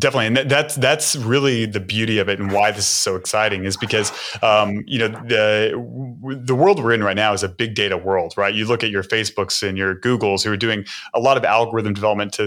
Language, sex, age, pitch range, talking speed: English, male, 30-49, 100-115 Hz, 240 wpm